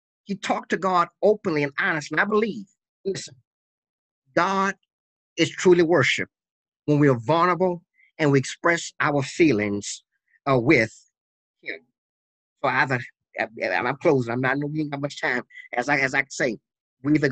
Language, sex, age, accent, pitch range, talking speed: English, male, 30-49, American, 140-185 Hz, 150 wpm